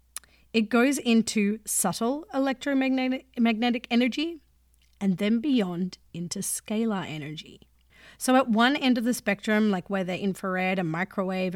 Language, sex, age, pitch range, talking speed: English, female, 30-49, 185-230 Hz, 130 wpm